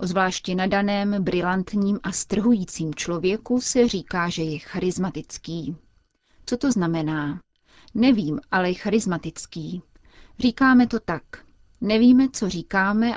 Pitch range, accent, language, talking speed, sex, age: 170-210 Hz, native, Czech, 110 wpm, female, 30-49